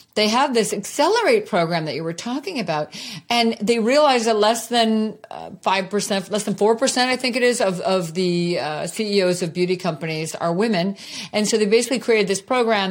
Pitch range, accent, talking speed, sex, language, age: 175-235 Hz, American, 195 wpm, female, English, 40-59